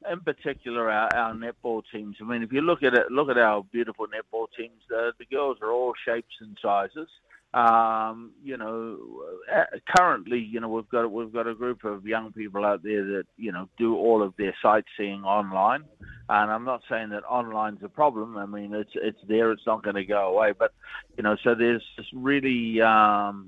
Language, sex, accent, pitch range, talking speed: English, male, Australian, 105-120 Hz, 200 wpm